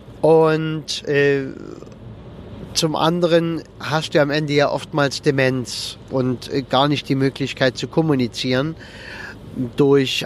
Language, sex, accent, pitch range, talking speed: German, male, German, 130-165 Hz, 115 wpm